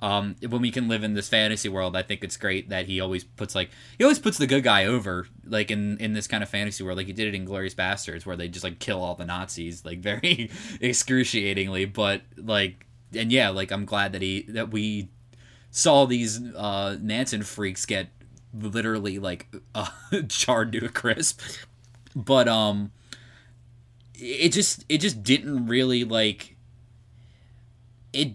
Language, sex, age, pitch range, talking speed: English, male, 20-39, 105-125 Hz, 180 wpm